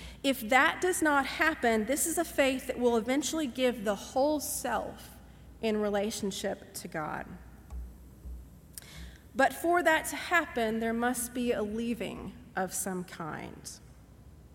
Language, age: English, 40-59